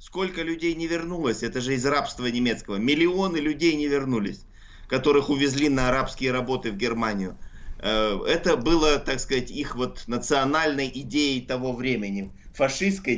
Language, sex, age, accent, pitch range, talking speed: Russian, male, 20-39, native, 120-145 Hz, 135 wpm